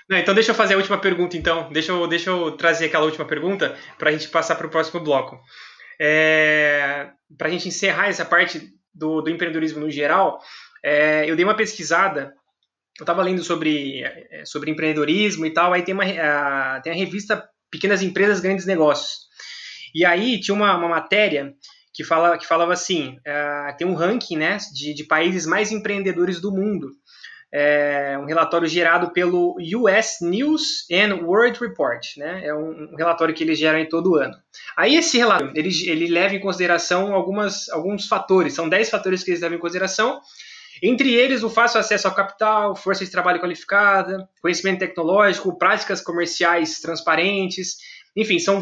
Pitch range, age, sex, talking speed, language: 160-200 Hz, 20-39, male, 165 wpm, Portuguese